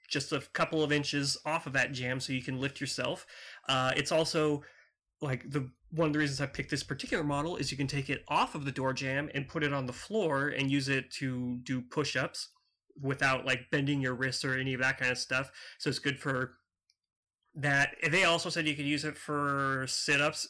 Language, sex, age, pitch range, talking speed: English, male, 30-49, 130-155 Hz, 225 wpm